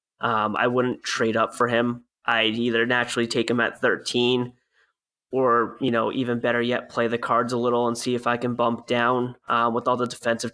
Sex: male